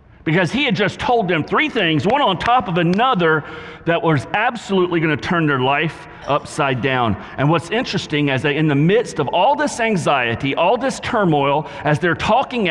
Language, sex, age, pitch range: English, male, 40-59, 145-210 Hz